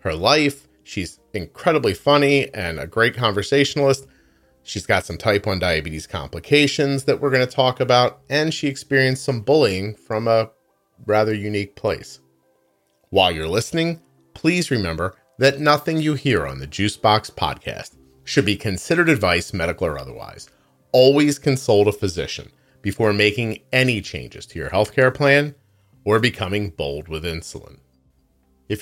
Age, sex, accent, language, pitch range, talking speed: 40-59, male, American, English, 90-140 Hz, 145 wpm